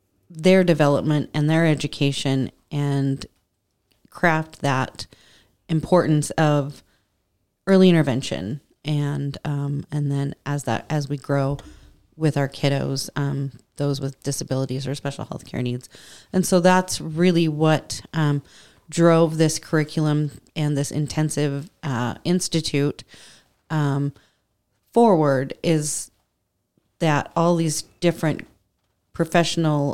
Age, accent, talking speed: 30-49, American, 110 wpm